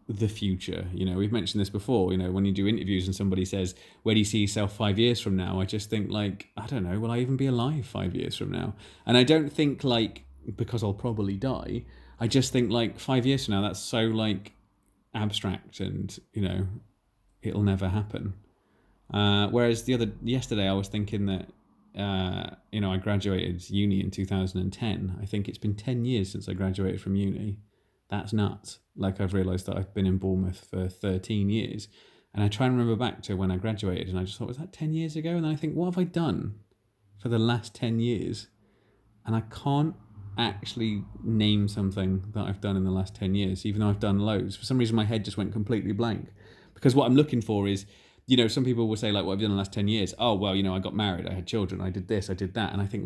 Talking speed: 240 wpm